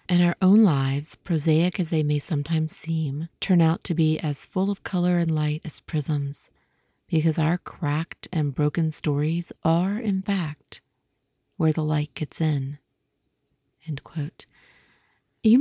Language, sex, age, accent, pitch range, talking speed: English, female, 30-49, American, 150-190 Hz, 150 wpm